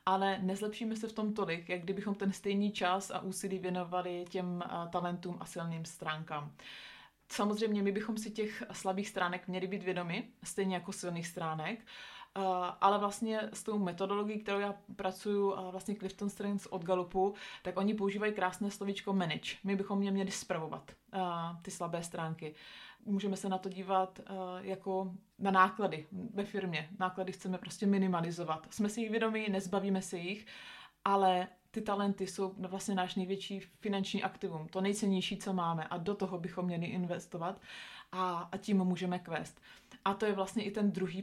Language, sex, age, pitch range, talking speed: Czech, female, 30-49, 180-200 Hz, 165 wpm